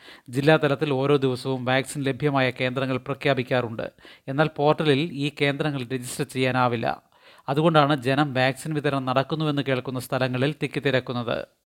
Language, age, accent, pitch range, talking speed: Malayalam, 30-49, native, 135-155 Hz, 105 wpm